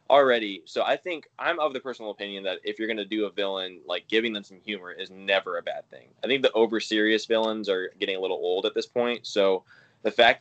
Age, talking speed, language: 10-29, 250 wpm, English